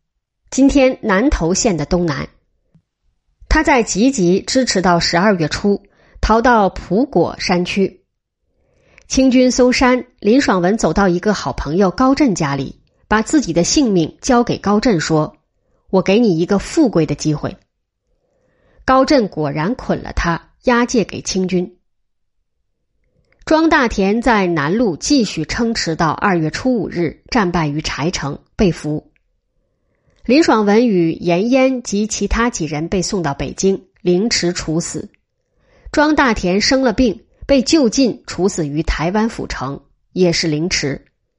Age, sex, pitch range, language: 20-39, female, 170-245 Hz, Chinese